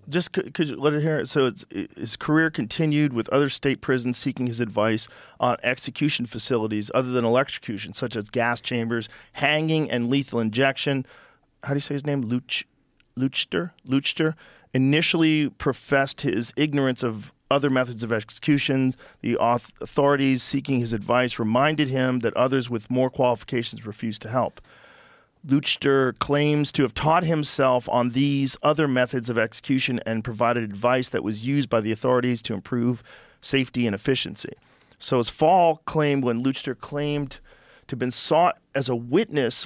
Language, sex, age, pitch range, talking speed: English, male, 40-59, 120-140 Hz, 165 wpm